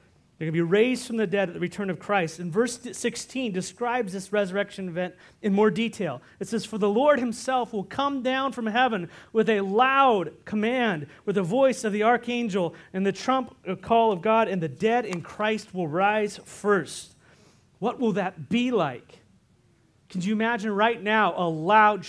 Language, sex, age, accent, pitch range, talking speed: English, male, 40-59, American, 185-225 Hz, 190 wpm